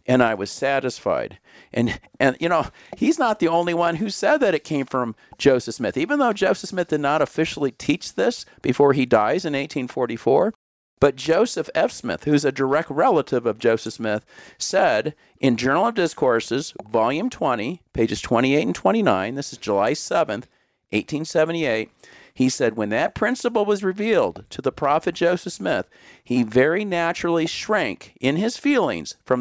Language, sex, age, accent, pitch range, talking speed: English, male, 50-69, American, 120-165 Hz, 165 wpm